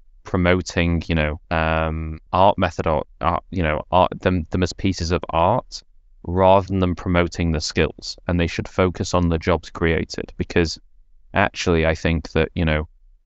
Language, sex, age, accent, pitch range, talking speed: English, male, 20-39, British, 80-90 Hz, 170 wpm